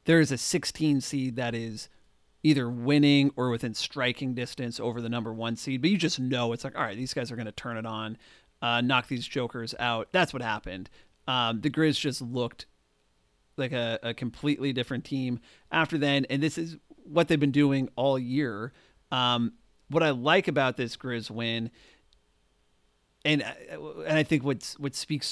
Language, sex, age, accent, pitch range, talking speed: English, male, 40-59, American, 115-145 Hz, 185 wpm